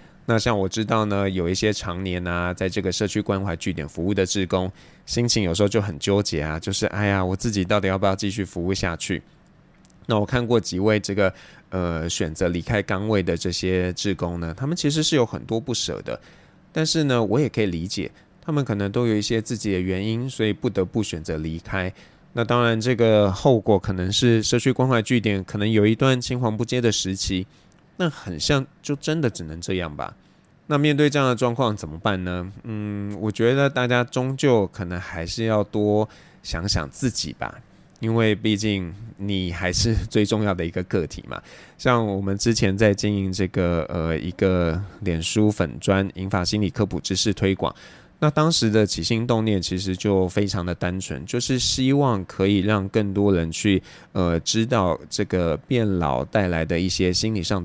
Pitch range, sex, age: 90-115 Hz, male, 20-39